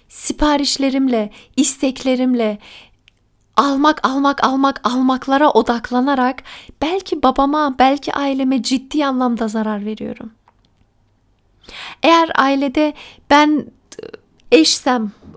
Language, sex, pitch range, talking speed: Turkish, female, 235-290 Hz, 75 wpm